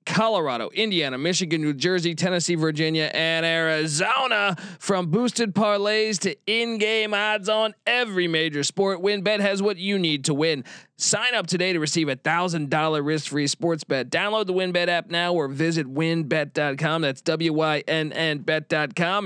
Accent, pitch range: American, 155-200 Hz